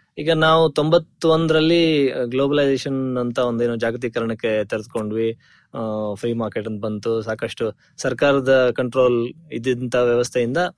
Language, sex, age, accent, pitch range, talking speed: Kannada, male, 20-39, native, 120-150 Hz, 100 wpm